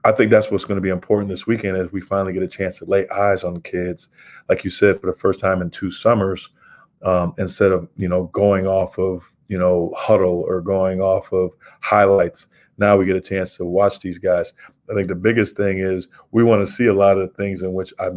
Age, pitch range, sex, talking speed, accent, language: 40-59, 95-110 Hz, male, 245 wpm, American, English